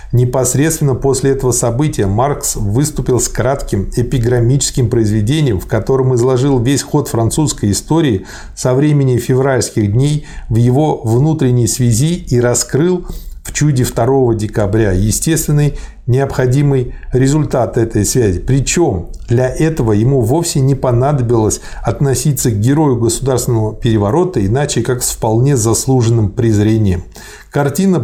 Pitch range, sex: 115-140 Hz, male